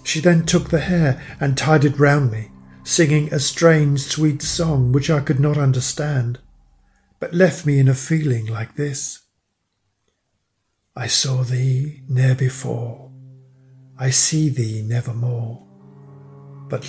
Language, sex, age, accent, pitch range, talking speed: English, male, 50-69, British, 120-155 Hz, 135 wpm